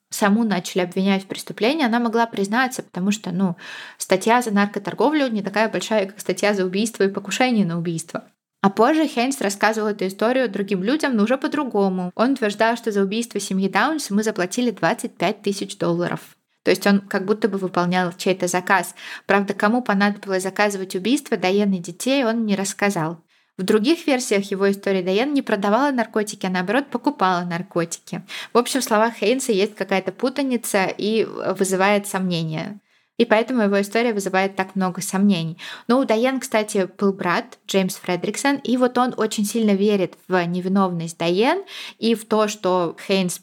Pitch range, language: 190-230 Hz, Russian